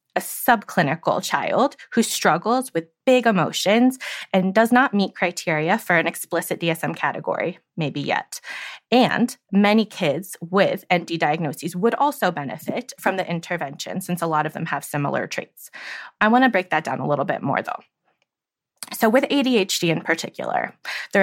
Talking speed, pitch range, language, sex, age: 160 wpm, 175-240 Hz, English, female, 20-39